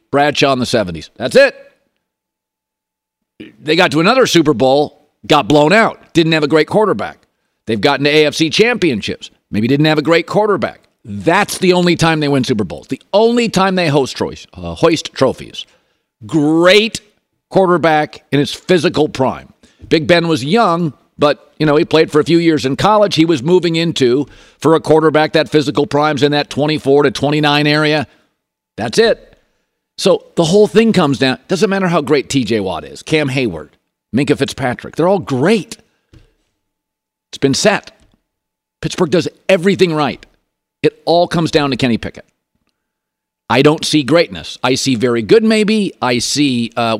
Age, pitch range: 50-69, 145-175 Hz